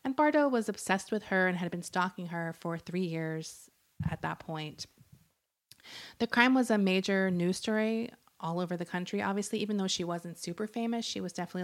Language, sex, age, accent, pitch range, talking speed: English, female, 20-39, American, 170-215 Hz, 195 wpm